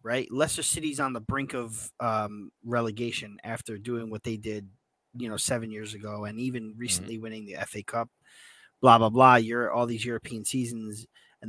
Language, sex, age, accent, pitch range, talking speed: English, male, 30-49, American, 115-145 Hz, 185 wpm